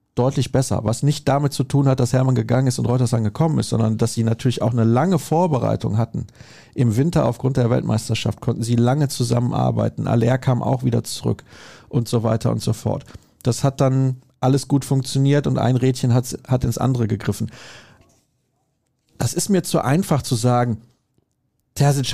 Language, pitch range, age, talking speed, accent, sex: German, 115-145 Hz, 40-59, 180 wpm, German, male